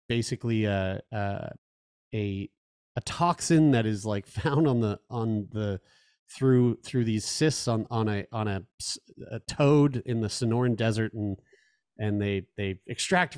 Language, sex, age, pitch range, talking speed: English, male, 30-49, 110-140 Hz, 155 wpm